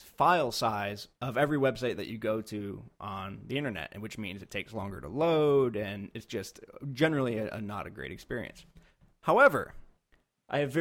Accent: American